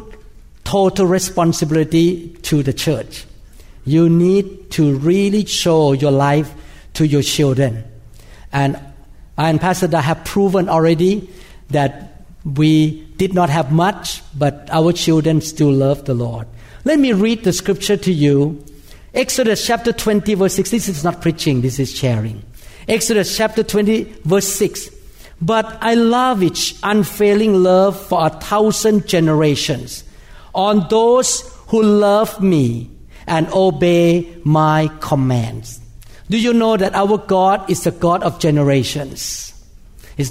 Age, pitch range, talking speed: 60-79, 145-200 Hz, 135 wpm